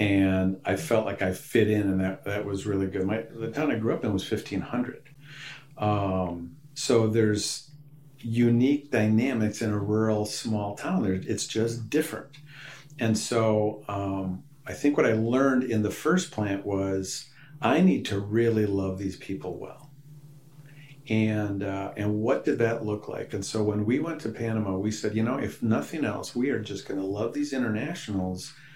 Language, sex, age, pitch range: English, male, 50-69, 100-130 Hz